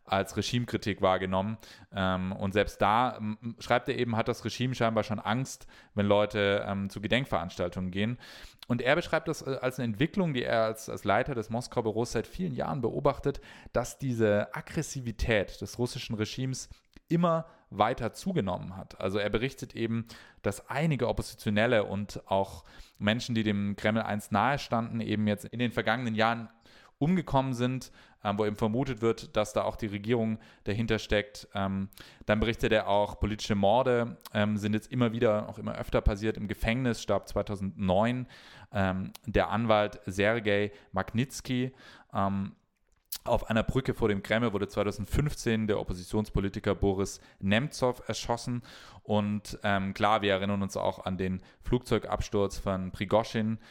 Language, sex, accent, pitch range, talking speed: English, male, German, 100-120 Hz, 150 wpm